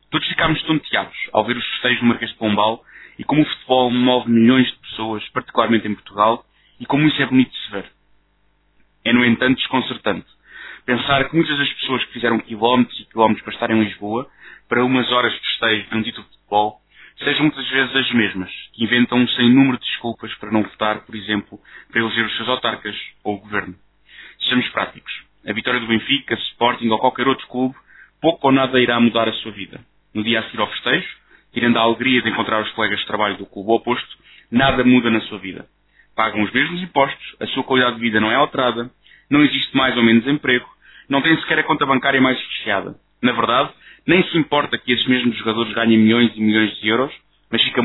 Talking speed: 210 wpm